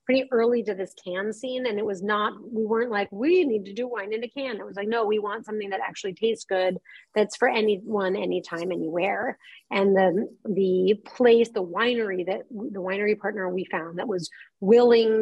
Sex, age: female, 30-49